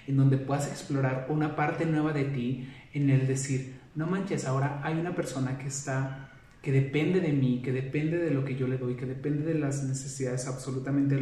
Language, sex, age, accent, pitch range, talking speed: Spanish, male, 30-49, Mexican, 130-155 Hz, 210 wpm